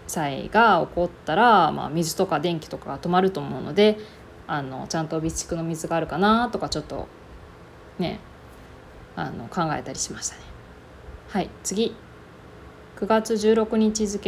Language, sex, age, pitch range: Japanese, female, 20-39, 165-215 Hz